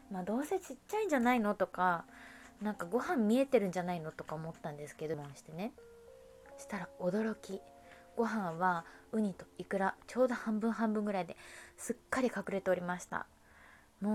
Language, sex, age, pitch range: Japanese, female, 20-39, 170-220 Hz